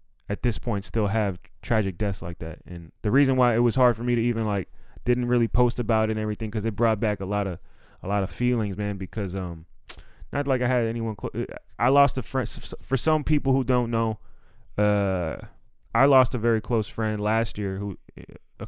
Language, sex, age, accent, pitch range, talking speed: English, male, 20-39, American, 100-120 Hz, 220 wpm